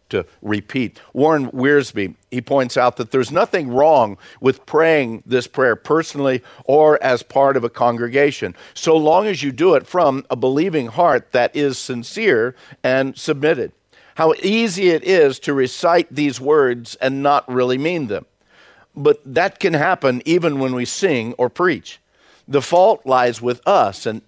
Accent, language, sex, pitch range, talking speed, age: American, English, male, 120-155 Hz, 165 wpm, 50-69